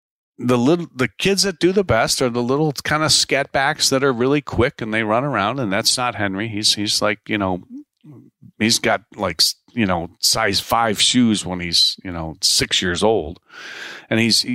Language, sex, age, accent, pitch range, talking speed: English, male, 40-59, American, 105-140 Hz, 200 wpm